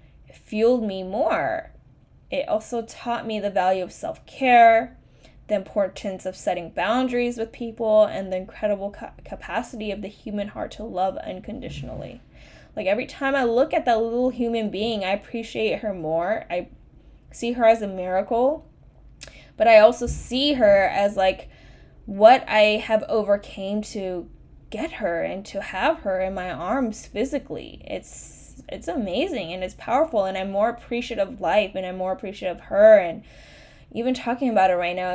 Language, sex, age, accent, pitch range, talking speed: English, female, 10-29, American, 190-235 Hz, 165 wpm